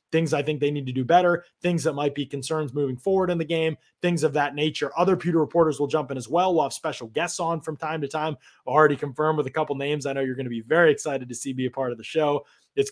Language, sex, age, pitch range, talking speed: English, male, 20-39, 125-160 Hz, 290 wpm